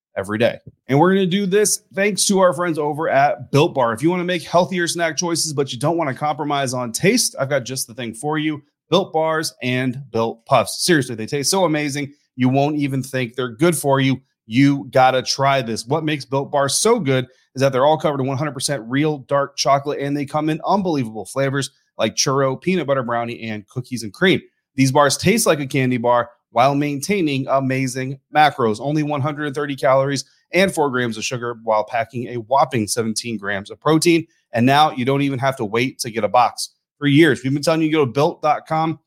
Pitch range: 130-160 Hz